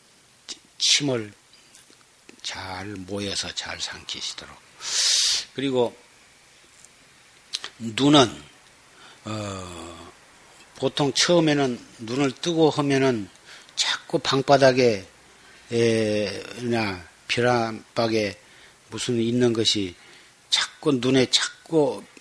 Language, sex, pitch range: Korean, male, 100-135 Hz